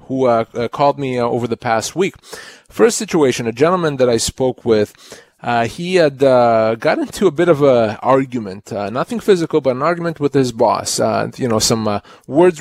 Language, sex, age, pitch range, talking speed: English, male, 30-49, 115-145 Hz, 210 wpm